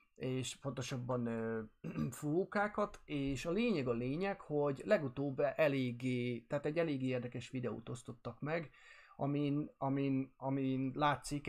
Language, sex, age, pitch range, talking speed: Hungarian, male, 30-49, 125-145 Hz, 115 wpm